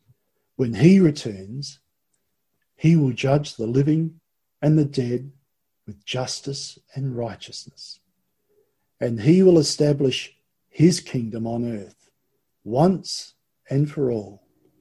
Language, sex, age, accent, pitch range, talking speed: English, male, 50-69, Australian, 115-150 Hz, 110 wpm